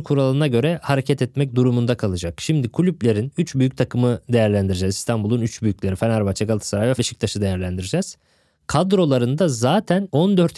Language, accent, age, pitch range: Turkish, native, 20-39, 120-150 Hz